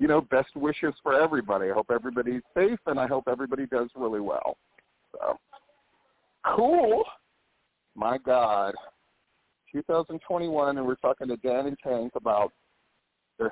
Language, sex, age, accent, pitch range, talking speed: English, male, 50-69, American, 120-160 Hz, 140 wpm